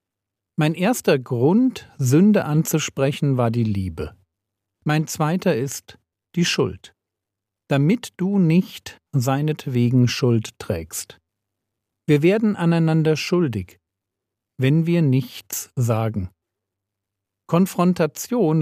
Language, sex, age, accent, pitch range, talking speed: German, male, 50-69, German, 105-160 Hz, 90 wpm